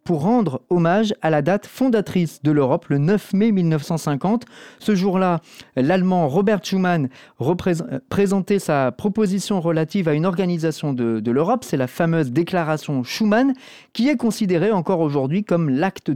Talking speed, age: 150 wpm, 40-59